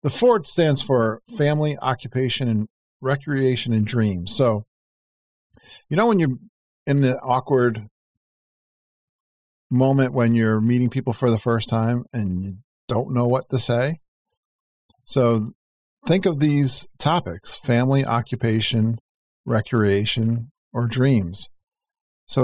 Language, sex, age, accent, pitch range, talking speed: English, male, 50-69, American, 110-130 Hz, 120 wpm